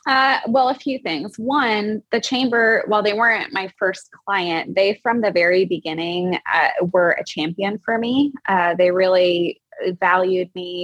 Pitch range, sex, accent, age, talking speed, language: 165-200 Hz, female, American, 20-39, 165 wpm, English